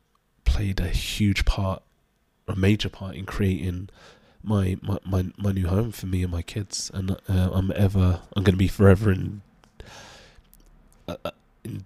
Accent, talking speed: British, 150 wpm